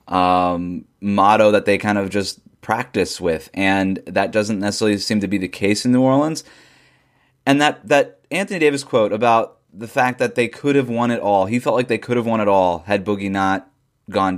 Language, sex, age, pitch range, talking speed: English, male, 20-39, 105-140 Hz, 210 wpm